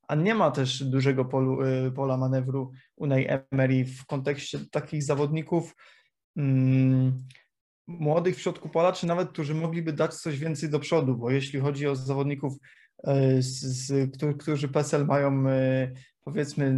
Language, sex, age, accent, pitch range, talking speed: Polish, male, 20-39, native, 135-160 Hz, 155 wpm